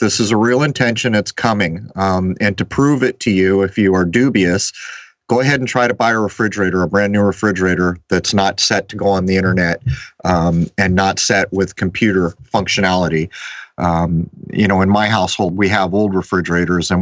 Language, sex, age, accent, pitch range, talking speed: English, male, 40-59, American, 95-110 Hz, 195 wpm